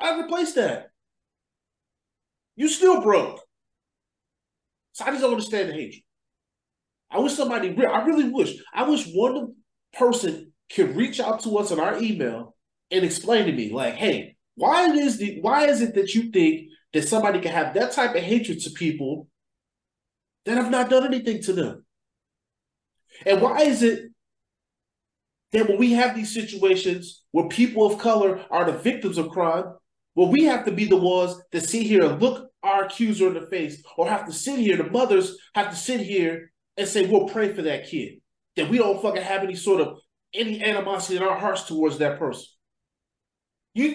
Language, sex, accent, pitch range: English, male, American, 175-260 Hz